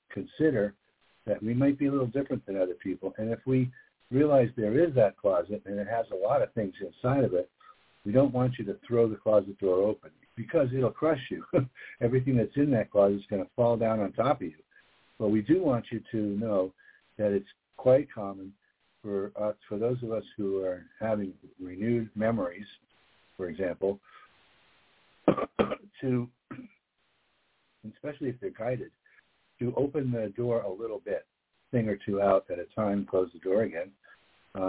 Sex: male